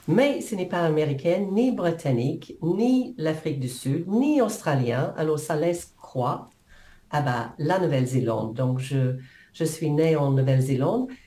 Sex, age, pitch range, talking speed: female, 50-69, 135-185 Hz, 155 wpm